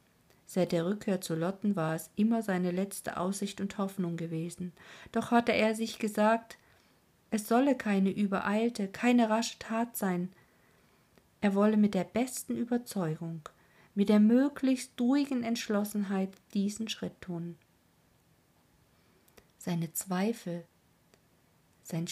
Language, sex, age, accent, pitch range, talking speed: German, female, 50-69, German, 175-220 Hz, 120 wpm